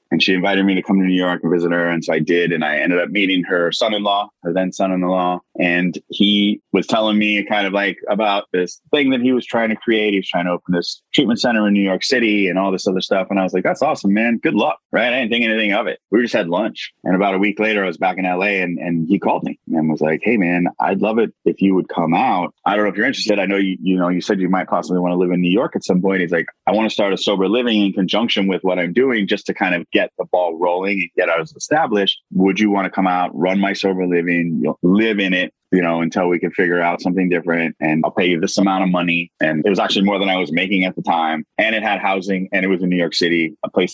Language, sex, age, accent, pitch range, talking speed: English, male, 20-39, American, 90-100 Hz, 295 wpm